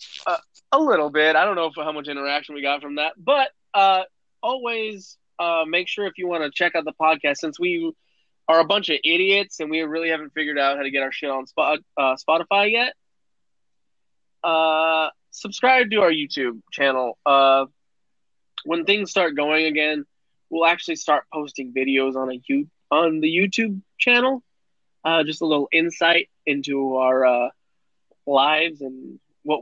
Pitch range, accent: 140-180 Hz, American